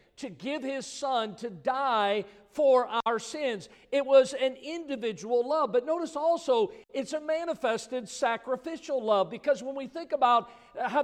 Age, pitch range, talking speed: 50-69, 230-275 Hz, 150 wpm